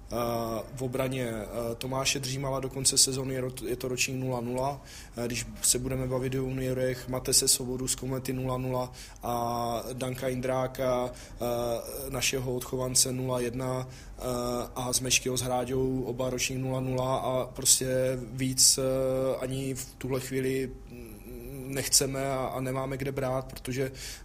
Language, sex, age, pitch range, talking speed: Czech, male, 20-39, 125-130 Hz, 125 wpm